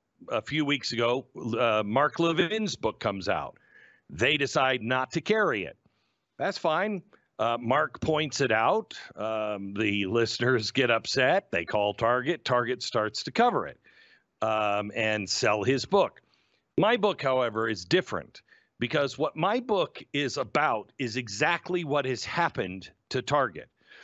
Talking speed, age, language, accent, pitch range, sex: 145 wpm, 50-69, English, American, 115-180 Hz, male